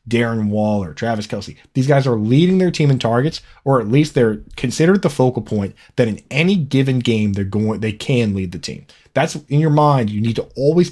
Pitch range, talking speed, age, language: 110-145 Hz, 220 wpm, 20-39, English